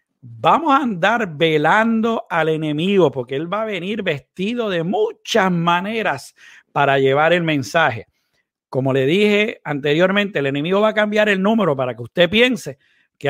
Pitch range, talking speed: 145-205 Hz, 160 wpm